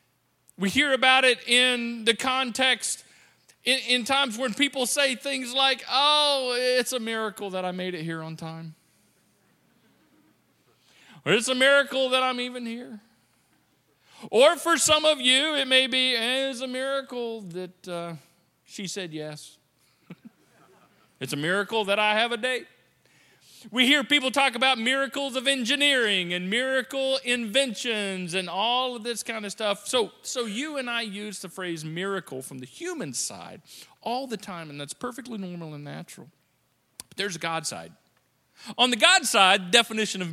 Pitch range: 185-260 Hz